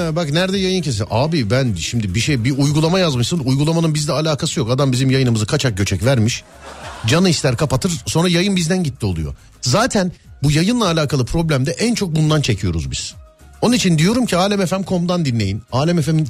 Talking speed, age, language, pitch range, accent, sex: 175 wpm, 40-59, Turkish, 115-185 Hz, native, male